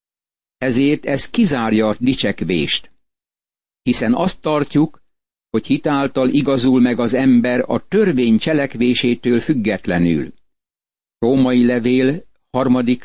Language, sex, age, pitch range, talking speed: Hungarian, male, 60-79, 115-145 Hz, 95 wpm